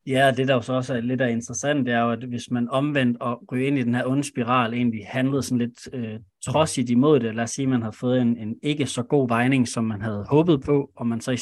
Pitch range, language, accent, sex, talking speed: 115-135 Hz, Danish, native, male, 280 wpm